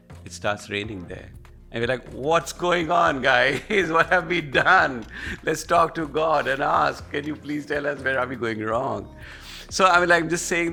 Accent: Indian